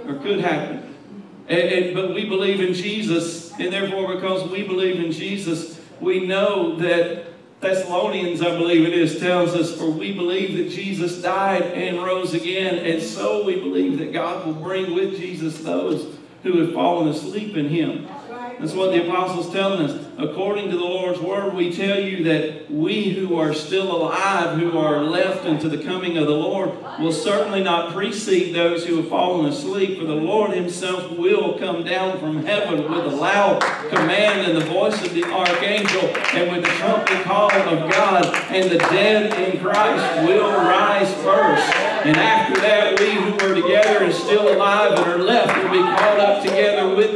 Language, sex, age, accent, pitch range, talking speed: English, male, 40-59, American, 175-225 Hz, 180 wpm